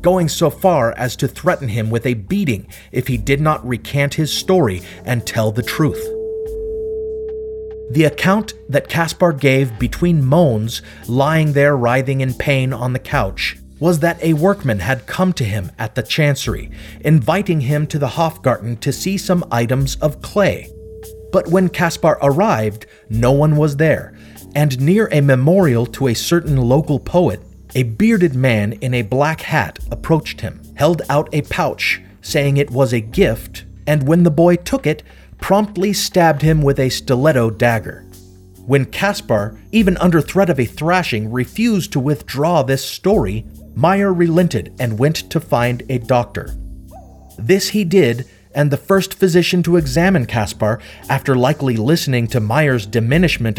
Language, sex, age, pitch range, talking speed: English, male, 30-49, 115-170 Hz, 160 wpm